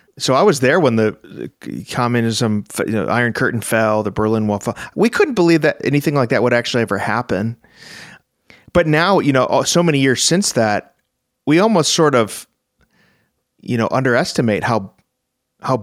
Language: English